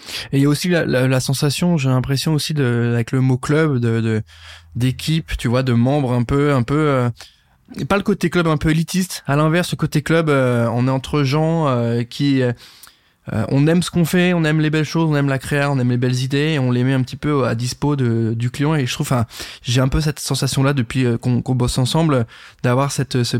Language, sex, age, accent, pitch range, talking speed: French, male, 20-39, French, 125-150 Hz, 255 wpm